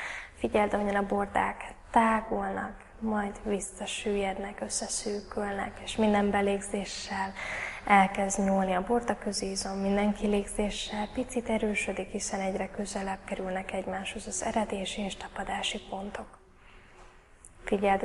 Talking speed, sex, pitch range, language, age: 105 wpm, female, 190-210 Hz, Hungarian, 10-29